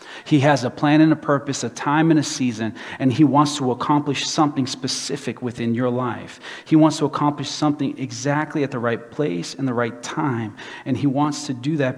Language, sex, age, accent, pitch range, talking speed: English, male, 40-59, American, 130-155 Hz, 210 wpm